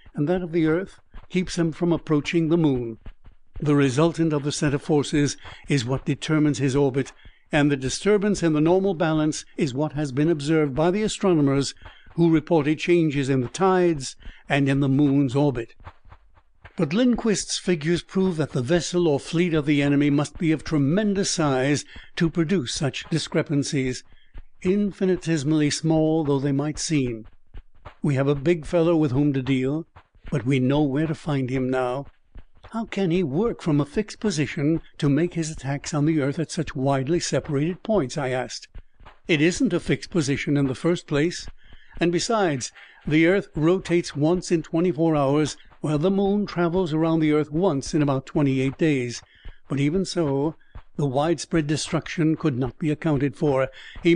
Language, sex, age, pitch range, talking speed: English, male, 60-79, 140-175 Hz, 175 wpm